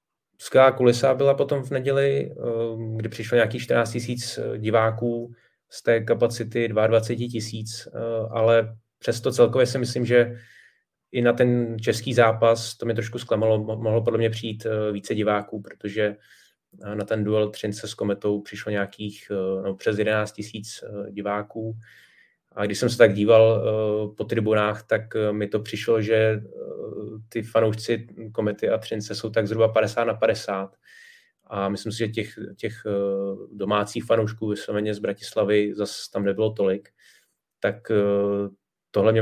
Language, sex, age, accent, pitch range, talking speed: Czech, male, 20-39, native, 105-115 Hz, 140 wpm